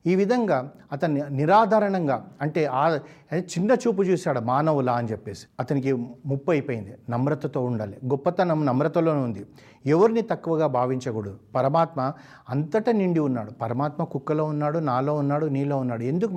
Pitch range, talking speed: 125-160 Hz, 130 wpm